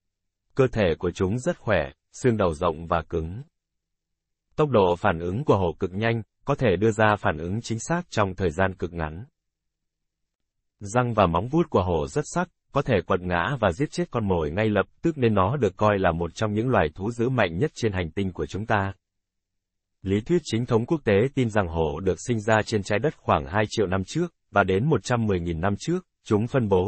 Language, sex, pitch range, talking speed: Vietnamese, male, 90-120 Hz, 220 wpm